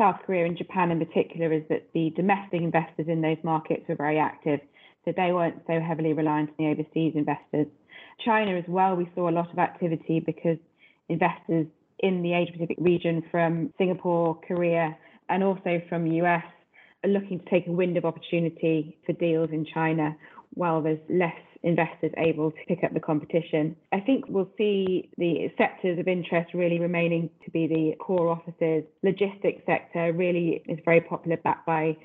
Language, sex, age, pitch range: English, female, 20-39, 160-175 Hz